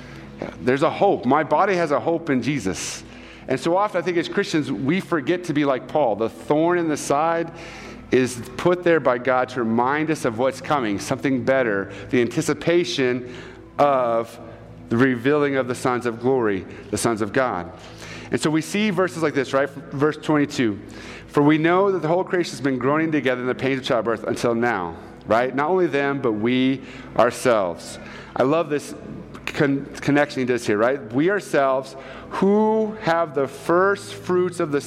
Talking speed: 185 wpm